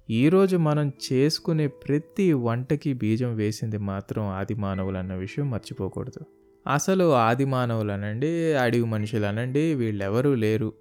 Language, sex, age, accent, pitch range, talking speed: Telugu, male, 20-39, native, 110-145 Hz, 115 wpm